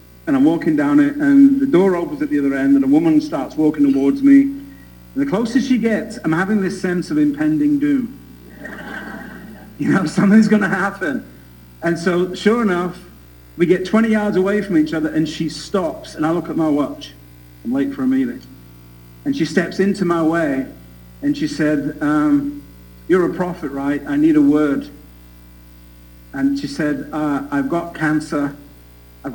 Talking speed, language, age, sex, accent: 185 wpm, English, 50-69, male, British